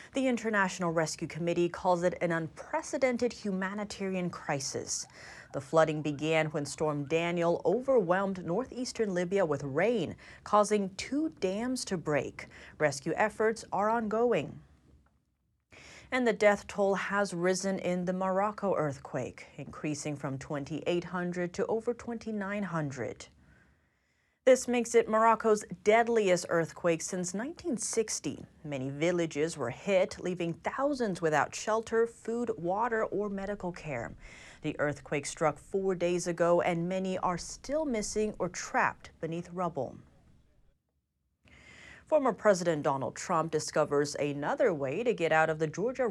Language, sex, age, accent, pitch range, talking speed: English, female, 30-49, American, 160-220 Hz, 125 wpm